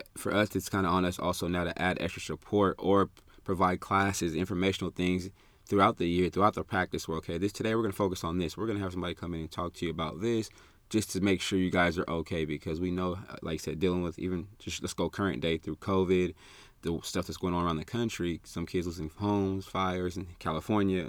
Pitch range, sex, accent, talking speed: 80-95 Hz, male, American, 245 wpm